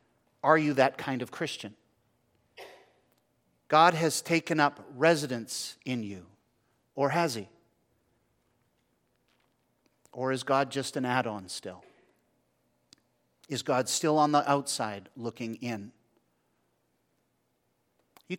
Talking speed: 105 wpm